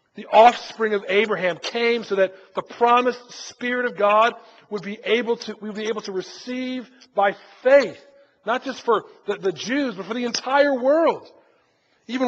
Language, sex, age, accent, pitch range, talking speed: English, male, 50-69, American, 205-250 Hz, 175 wpm